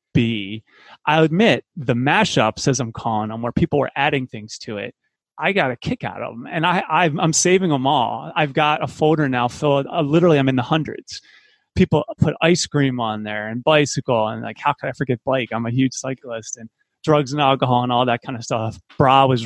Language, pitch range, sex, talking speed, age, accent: English, 115-150 Hz, male, 225 wpm, 30-49, American